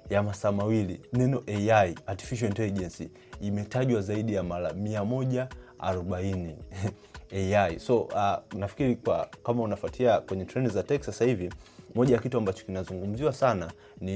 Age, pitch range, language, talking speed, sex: 30-49, 95-115 Hz, Swahili, 135 wpm, male